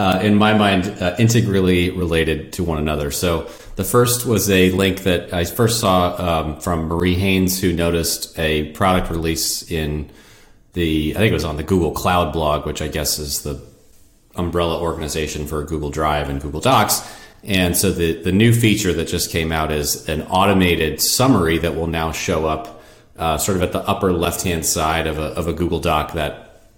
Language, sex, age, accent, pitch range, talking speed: English, male, 30-49, American, 80-95 Hz, 195 wpm